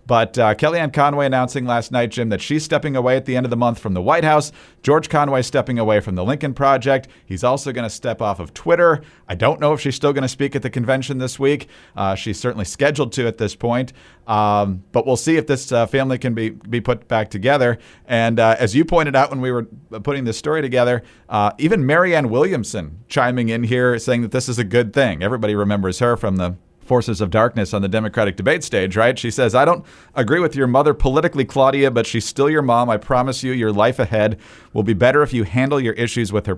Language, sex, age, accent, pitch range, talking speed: English, male, 40-59, American, 110-140 Hz, 240 wpm